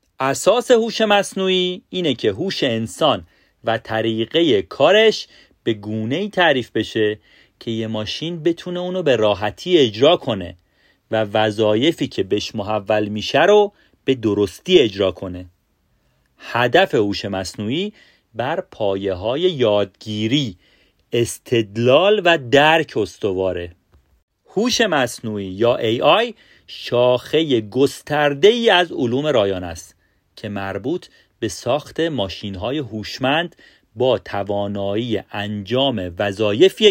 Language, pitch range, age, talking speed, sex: Persian, 100-165 Hz, 40-59, 105 wpm, male